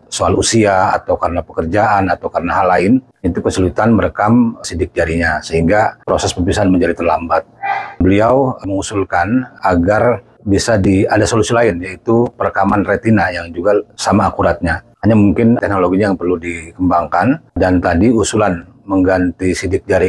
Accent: native